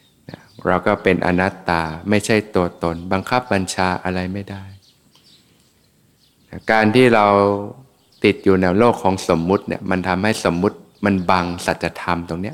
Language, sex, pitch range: Thai, male, 90-105 Hz